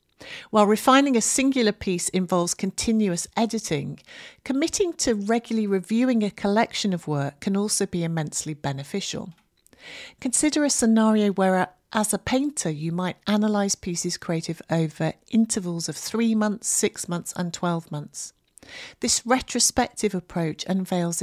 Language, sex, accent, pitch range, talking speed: English, female, British, 170-220 Hz, 135 wpm